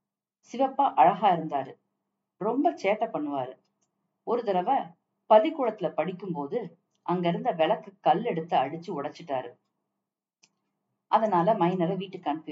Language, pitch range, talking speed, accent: Tamil, 150-210 Hz, 105 wpm, native